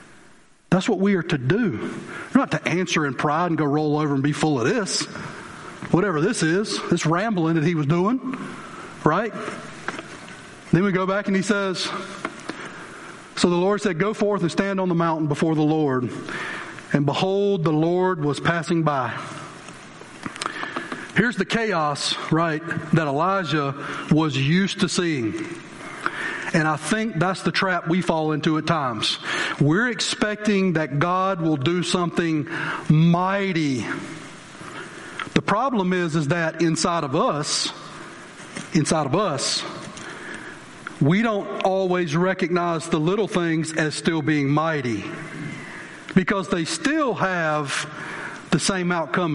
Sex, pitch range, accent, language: male, 155-190 Hz, American, English